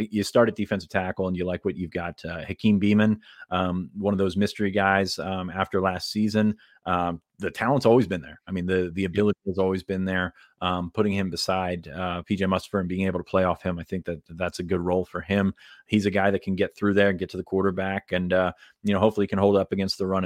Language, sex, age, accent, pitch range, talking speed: English, male, 30-49, American, 90-105 Hz, 255 wpm